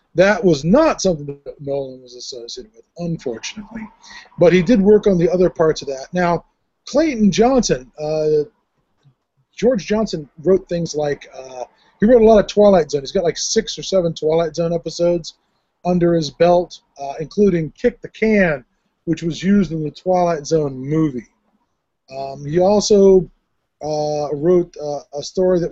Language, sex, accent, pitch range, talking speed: English, male, American, 145-190 Hz, 165 wpm